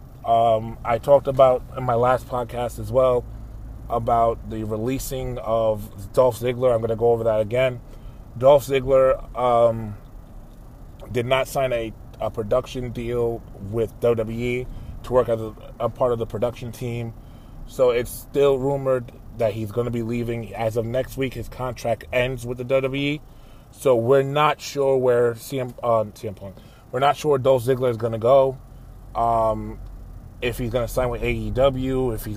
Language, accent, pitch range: English, American, 110-130 Hz